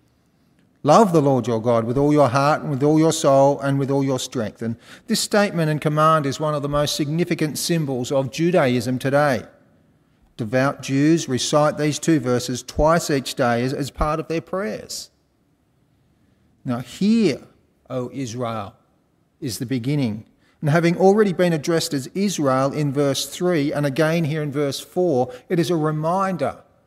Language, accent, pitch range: English, Australian, 130-160 Hz